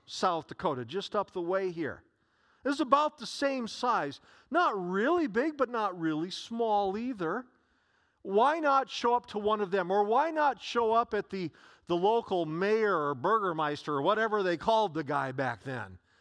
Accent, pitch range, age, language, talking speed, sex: American, 170-235 Hz, 50-69, English, 180 wpm, male